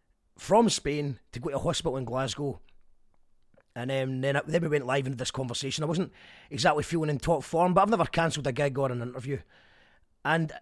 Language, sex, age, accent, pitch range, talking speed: English, male, 30-49, British, 135-190 Hz, 200 wpm